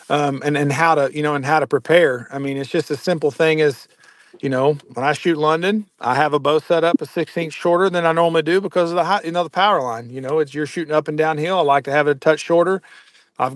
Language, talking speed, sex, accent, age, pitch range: English, 285 wpm, male, American, 50-69, 145-175 Hz